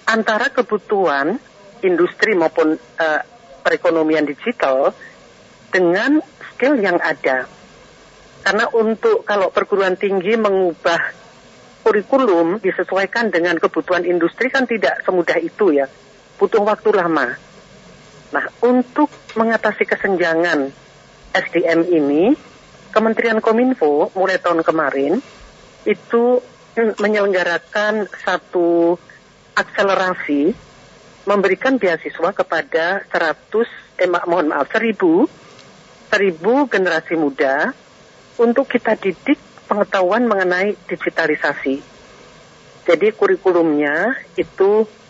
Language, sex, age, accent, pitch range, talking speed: Indonesian, female, 50-69, native, 165-230 Hz, 90 wpm